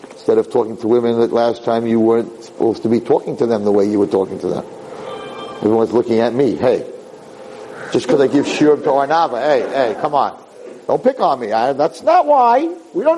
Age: 50-69